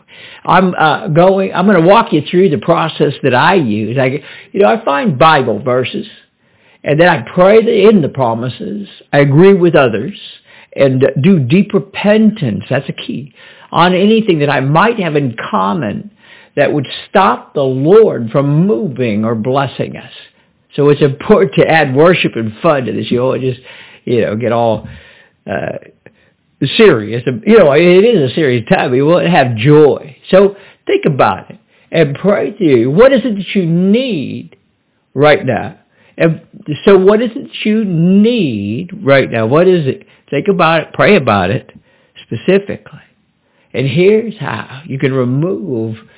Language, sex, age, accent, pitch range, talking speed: English, male, 60-79, American, 135-200 Hz, 170 wpm